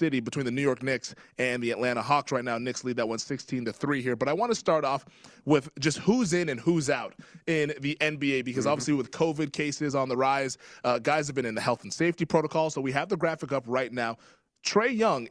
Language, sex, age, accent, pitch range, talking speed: English, male, 20-39, American, 130-160 Hz, 240 wpm